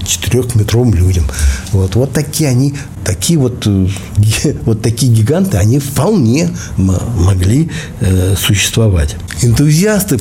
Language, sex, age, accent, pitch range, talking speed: Russian, male, 60-79, native, 105-135 Hz, 105 wpm